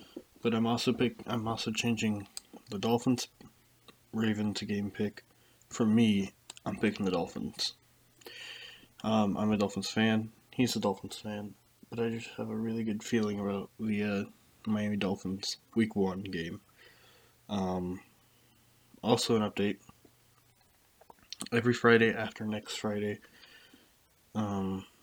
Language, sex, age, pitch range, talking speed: English, male, 20-39, 100-115 Hz, 130 wpm